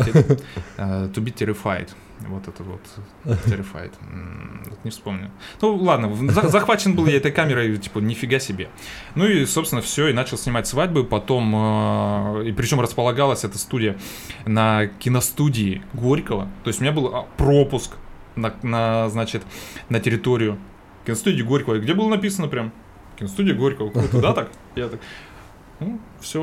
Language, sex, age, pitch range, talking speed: Russian, male, 20-39, 100-125 Hz, 135 wpm